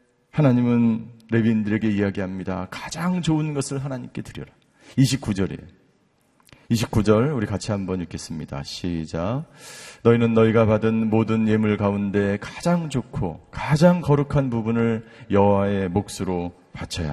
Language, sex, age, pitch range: Korean, male, 40-59, 110-150 Hz